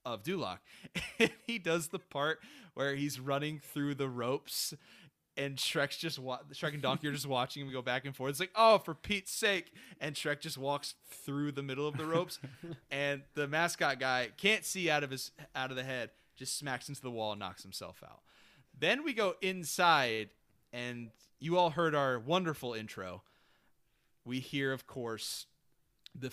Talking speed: 180 wpm